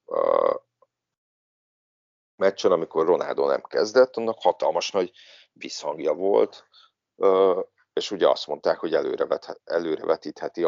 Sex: male